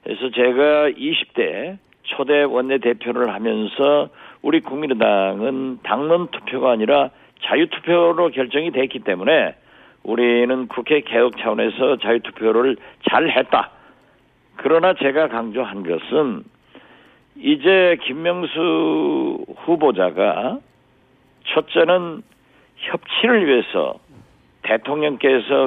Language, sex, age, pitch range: Korean, male, 50-69, 125-155 Hz